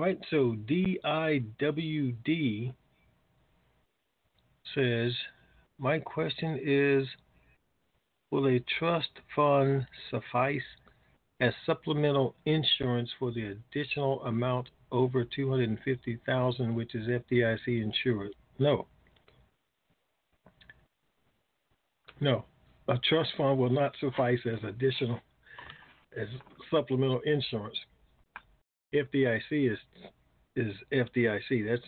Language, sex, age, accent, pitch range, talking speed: English, male, 50-69, American, 115-140 Hz, 95 wpm